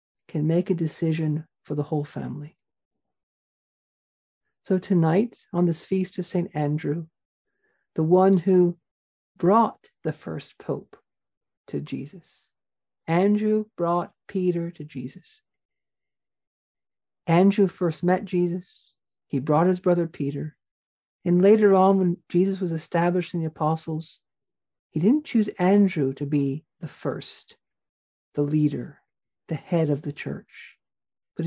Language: English